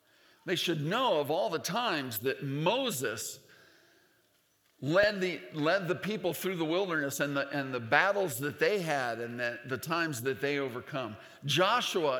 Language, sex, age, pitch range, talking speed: English, male, 50-69, 145-200 Hz, 160 wpm